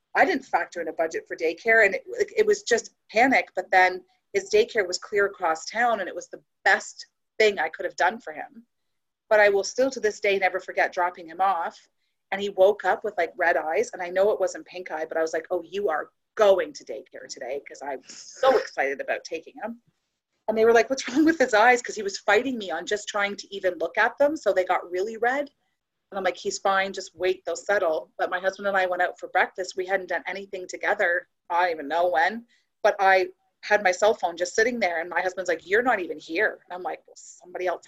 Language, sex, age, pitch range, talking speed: English, female, 30-49, 180-225 Hz, 250 wpm